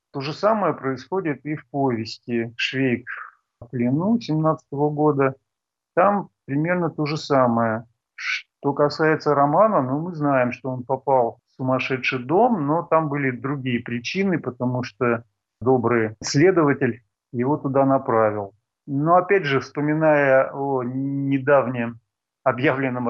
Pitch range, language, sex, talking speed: 120-145 Hz, Russian, male, 120 wpm